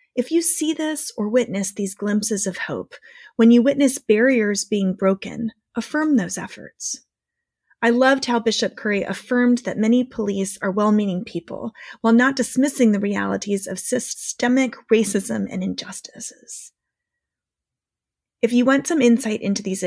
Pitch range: 210-275 Hz